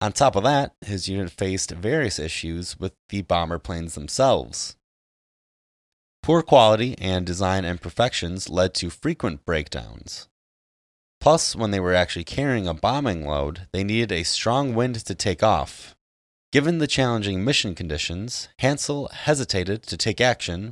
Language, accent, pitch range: English, American, 85-115 Hz